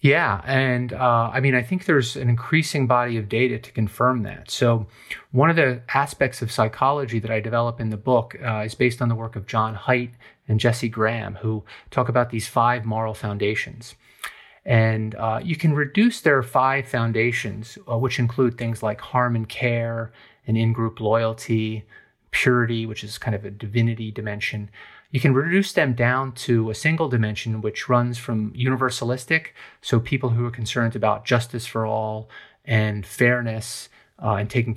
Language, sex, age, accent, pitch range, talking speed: English, male, 30-49, American, 110-125 Hz, 175 wpm